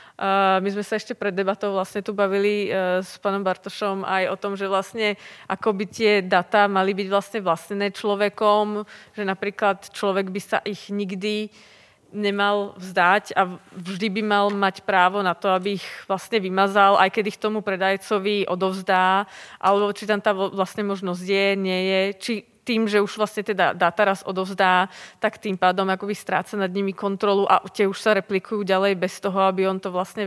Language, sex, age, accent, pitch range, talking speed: Czech, female, 20-39, native, 195-225 Hz, 170 wpm